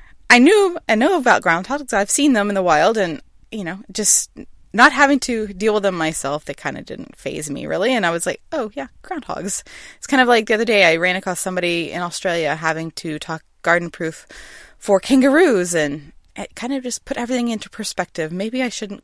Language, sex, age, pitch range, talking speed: English, female, 20-39, 175-240 Hz, 215 wpm